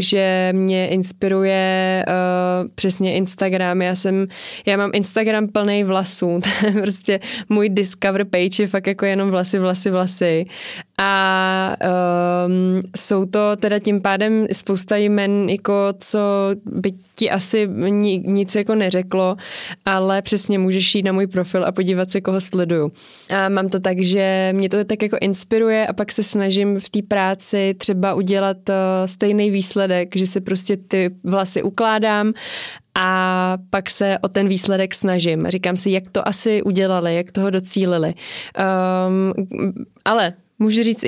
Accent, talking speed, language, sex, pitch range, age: native, 145 wpm, Czech, female, 185-205 Hz, 20-39